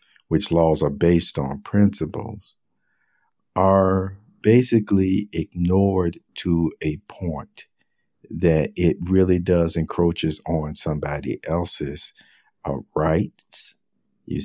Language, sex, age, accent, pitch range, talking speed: English, male, 50-69, American, 85-105 Hz, 95 wpm